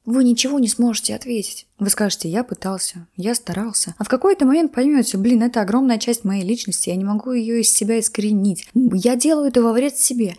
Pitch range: 185-235 Hz